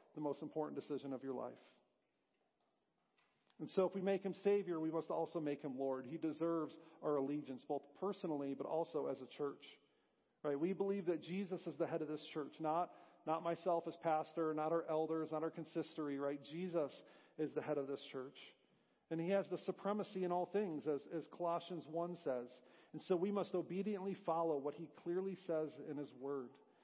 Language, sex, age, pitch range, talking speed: English, male, 40-59, 150-180 Hz, 195 wpm